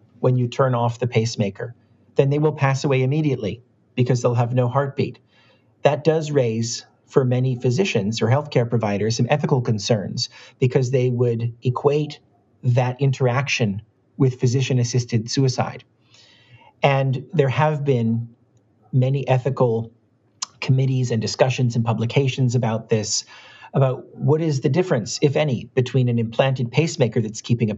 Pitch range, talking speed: 115-135 Hz, 145 wpm